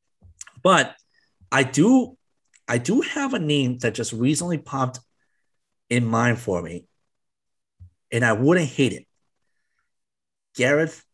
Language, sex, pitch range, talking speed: English, male, 115-135 Hz, 120 wpm